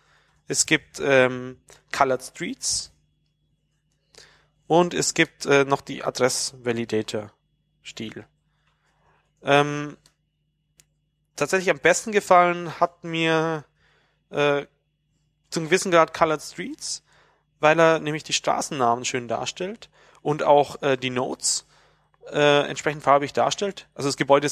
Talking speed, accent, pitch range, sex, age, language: 105 wpm, German, 125-150 Hz, male, 30-49, German